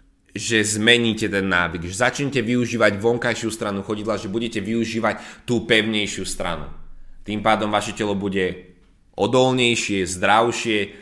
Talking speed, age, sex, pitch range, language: 125 wpm, 20-39, male, 95-120 Hz, Slovak